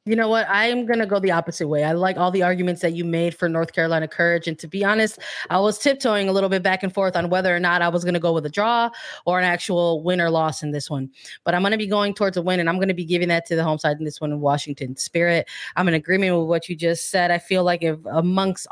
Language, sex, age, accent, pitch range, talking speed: English, female, 20-39, American, 165-195 Hz, 305 wpm